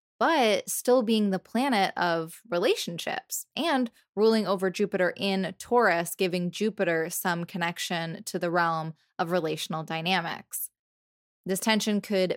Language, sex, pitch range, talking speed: English, female, 170-210 Hz, 125 wpm